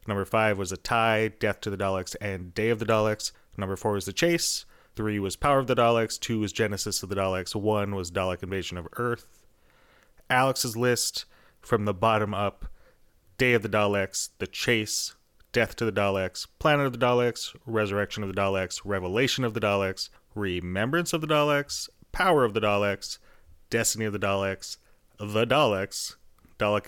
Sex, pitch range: male, 100-125 Hz